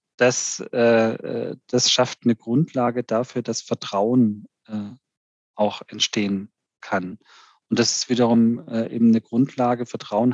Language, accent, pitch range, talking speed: German, German, 110-125 Hz, 110 wpm